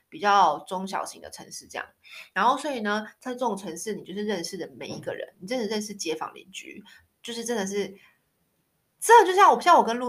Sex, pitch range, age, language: female, 190-250 Hz, 20-39, Chinese